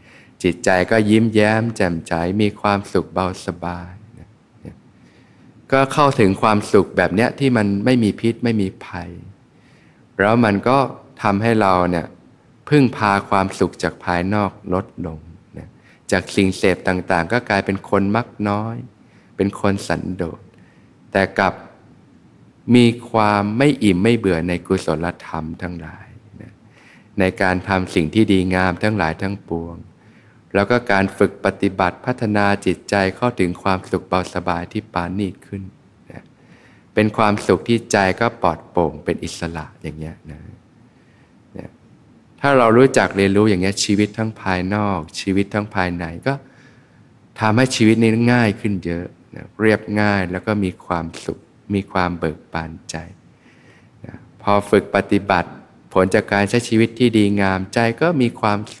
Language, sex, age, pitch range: Thai, male, 20-39, 95-115 Hz